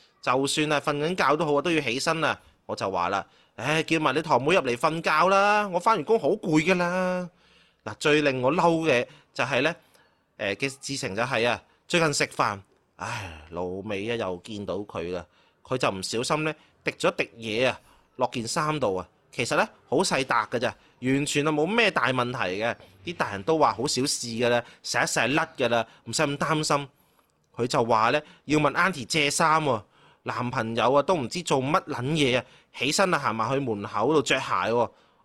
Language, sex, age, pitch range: Chinese, male, 30-49, 125-170 Hz